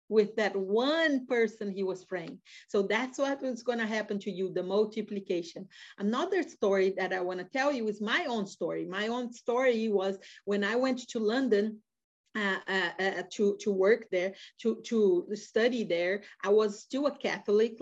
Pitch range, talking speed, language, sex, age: 195-235 Hz, 180 wpm, English, female, 40-59